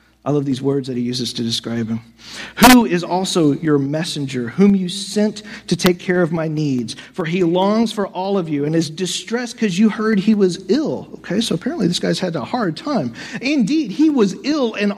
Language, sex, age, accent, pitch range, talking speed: English, male, 40-59, American, 150-205 Hz, 215 wpm